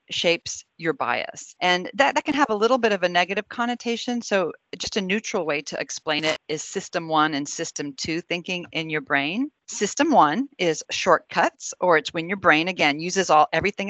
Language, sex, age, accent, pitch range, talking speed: English, female, 40-59, American, 165-220 Hz, 200 wpm